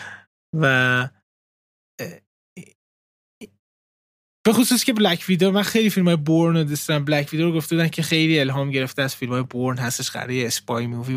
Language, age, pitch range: Persian, 20-39, 135-175 Hz